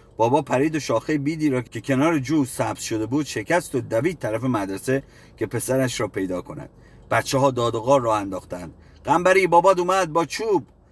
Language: Persian